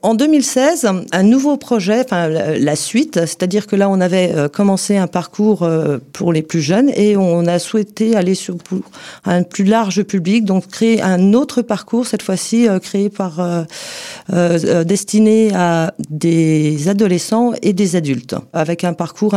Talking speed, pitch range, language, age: 150 wpm, 175-215 Hz, French, 40-59